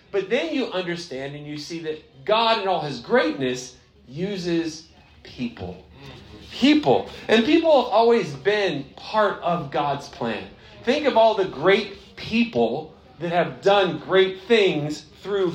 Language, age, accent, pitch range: English, 40-59, American, 165-210 Hz